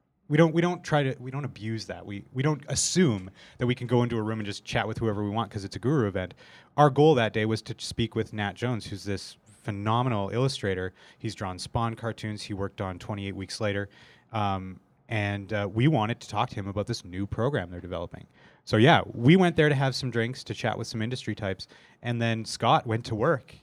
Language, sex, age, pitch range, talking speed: English, male, 30-49, 100-125 Hz, 240 wpm